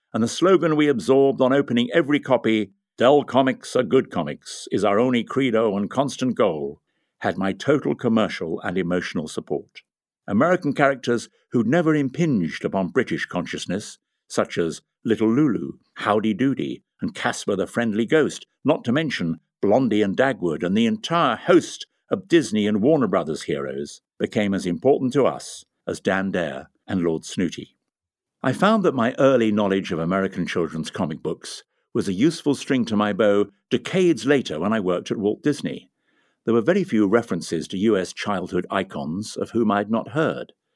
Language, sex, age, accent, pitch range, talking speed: English, male, 60-79, British, 100-140 Hz, 170 wpm